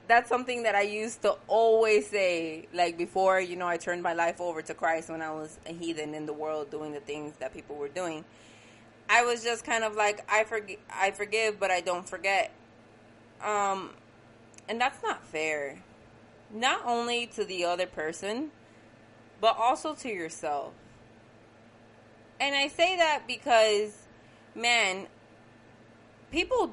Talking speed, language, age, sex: 155 wpm, English, 20-39, female